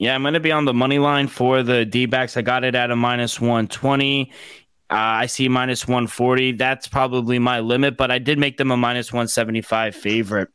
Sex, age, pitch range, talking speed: male, 20-39, 110-130 Hz, 210 wpm